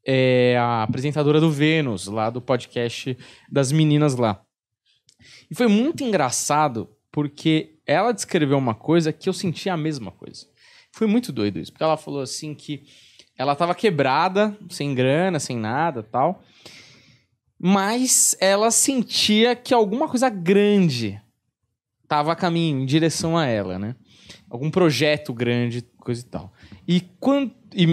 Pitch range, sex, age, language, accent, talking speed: 130-190 Hz, male, 20-39, Portuguese, Brazilian, 140 wpm